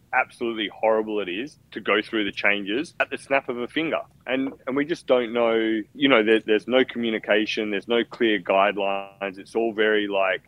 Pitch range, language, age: 95-120 Hz, English, 20-39